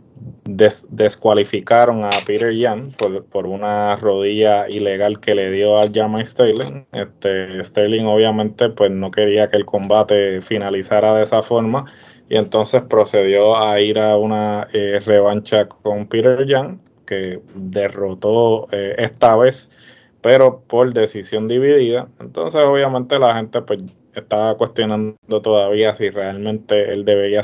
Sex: male